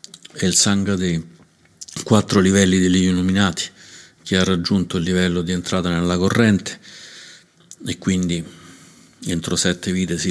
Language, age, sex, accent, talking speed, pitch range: Italian, 50-69, male, native, 135 wpm, 90-95 Hz